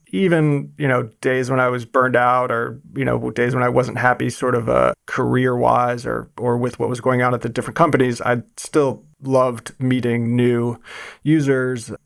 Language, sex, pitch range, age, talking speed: English, male, 125-145 Hz, 30-49, 195 wpm